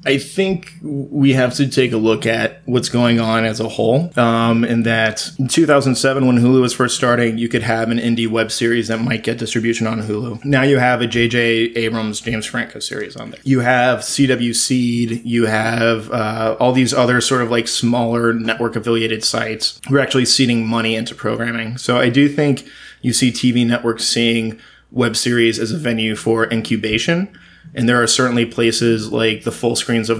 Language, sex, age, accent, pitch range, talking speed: English, male, 20-39, American, 115-130 Hz, 195 wpm